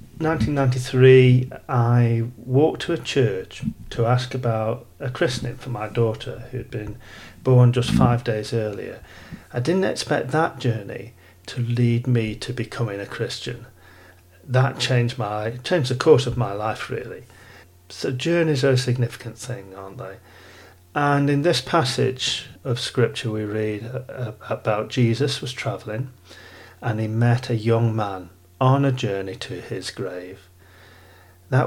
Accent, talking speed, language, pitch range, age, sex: British, 145 wpm, English, 100-130 Hz, 40-59, male